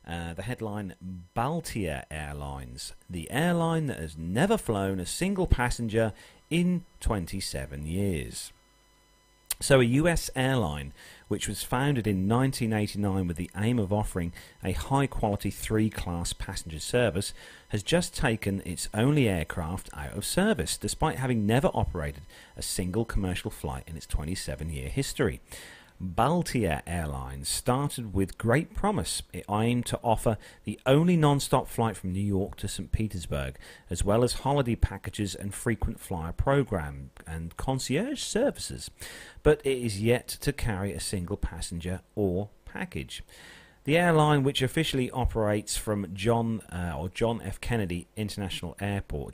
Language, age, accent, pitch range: English, 40-59, British, 90-120 Hz